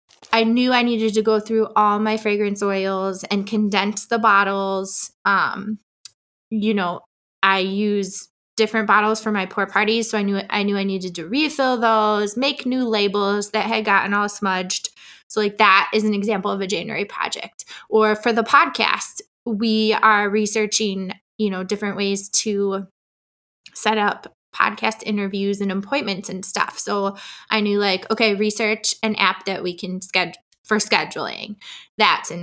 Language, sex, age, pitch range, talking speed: English, female, 20-39, 200-230 Hz, 165 wpm